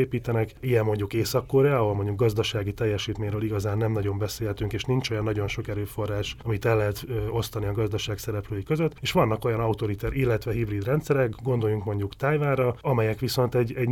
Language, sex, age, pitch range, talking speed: Hungarian, male, 30-49, 105-125 Hz, 175 wpm